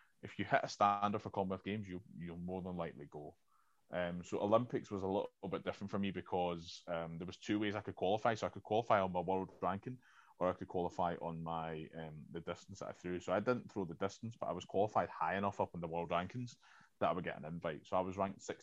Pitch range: 85-100 Hz